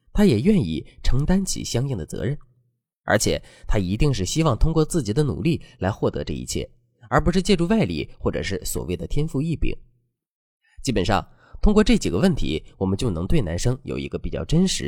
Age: 20-39